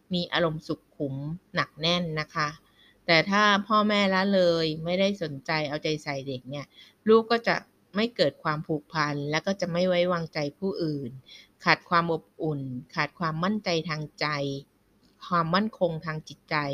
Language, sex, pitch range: Thai, female, 150-190 Hz